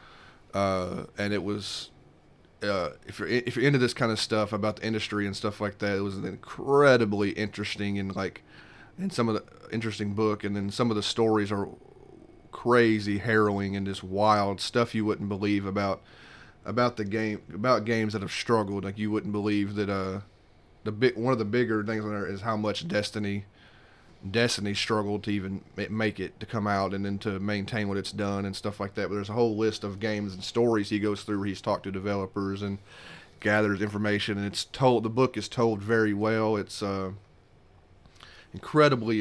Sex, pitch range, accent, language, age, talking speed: male, 100-110 Hz, American, English, 30-49, 195 wpm